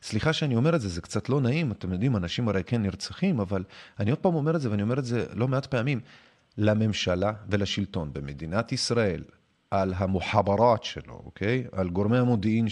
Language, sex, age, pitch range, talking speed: Hebrew, male, 30-49, 100-155 Hz, 190 wpm